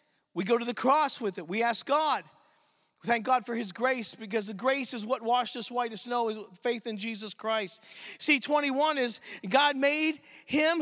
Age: 40-59